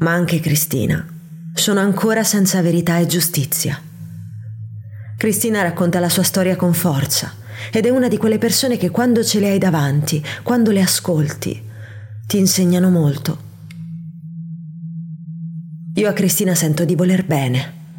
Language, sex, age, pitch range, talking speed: Italian, female, 30-49, 155-185 Hz, 135 wpm